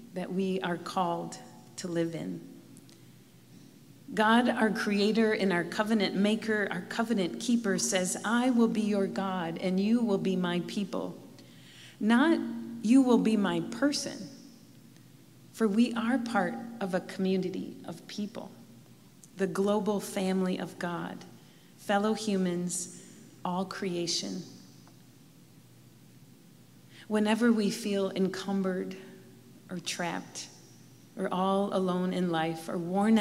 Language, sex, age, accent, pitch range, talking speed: English, female, 40-59, American, 185-220 Hz, 120 wpm